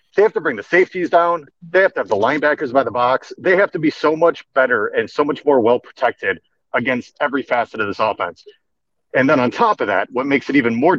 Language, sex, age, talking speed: English, male, 40-59, 245 wpm